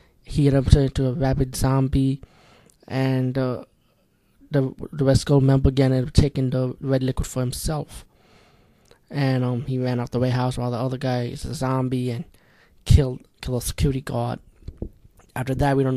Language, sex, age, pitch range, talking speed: English, male, 20-39, 130-140 Hz, 180 wpm